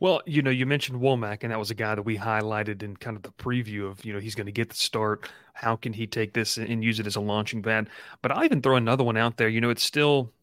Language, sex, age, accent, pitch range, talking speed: English, male, 30-49, American, 110-130 Hz, 300 wpm